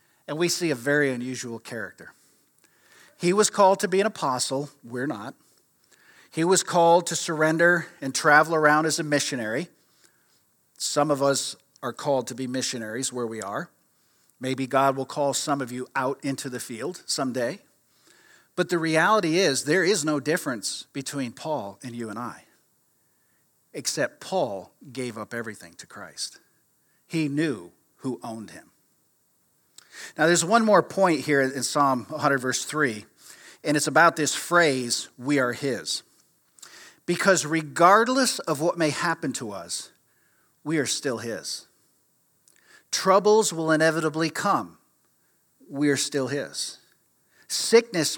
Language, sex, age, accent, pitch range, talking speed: English, male, 50-69, American, 130-170 Hz, 145 wpm